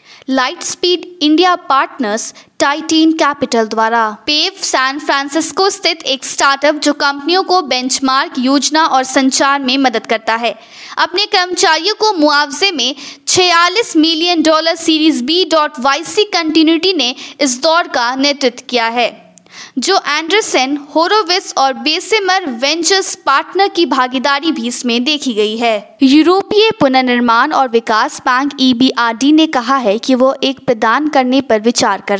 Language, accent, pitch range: Hindi, native, 250-325 Hz